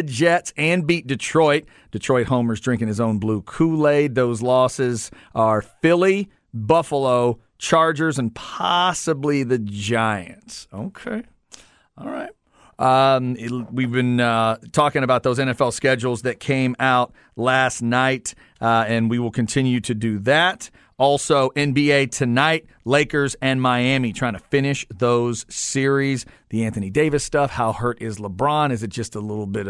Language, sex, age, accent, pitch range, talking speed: English, male, 40-59, American, 120-160 Hz, 145 wpm